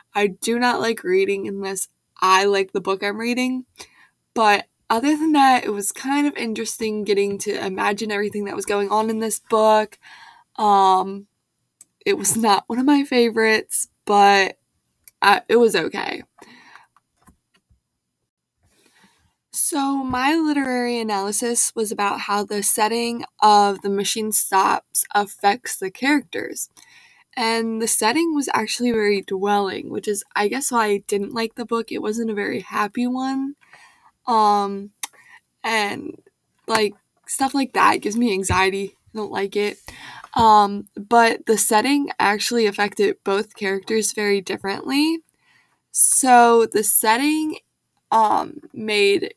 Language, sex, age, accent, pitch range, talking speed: English, female, 20-39, American, 205-260 Hz, 135 wpm